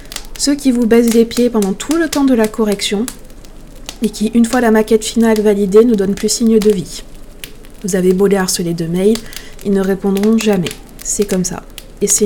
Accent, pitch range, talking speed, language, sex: French, 195-230 Hz, 210 wpm, French, female